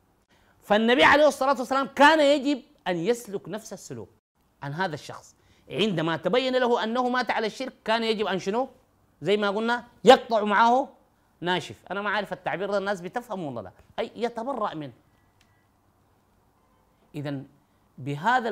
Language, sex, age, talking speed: Arabic, male, 30-49, 145 wpm